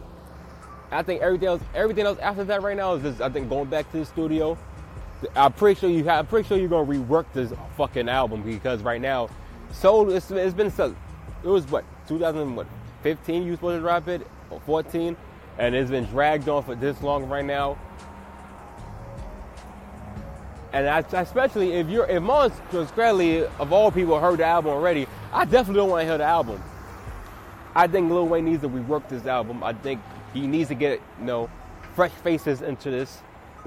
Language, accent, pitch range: English, American, 115-170 Hz